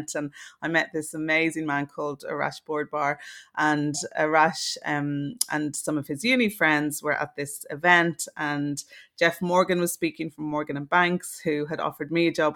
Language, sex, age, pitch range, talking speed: English, female, 30-49, 145-165 Hz, 175 wpm